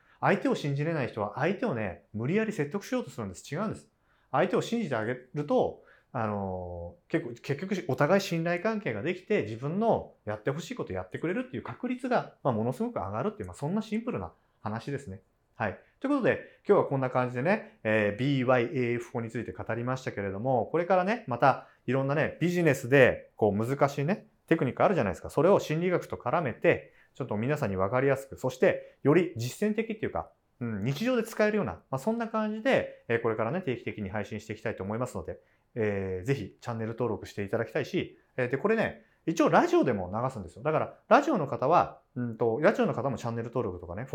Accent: native